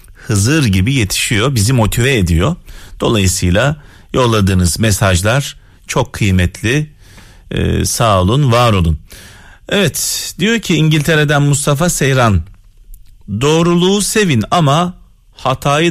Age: 40-59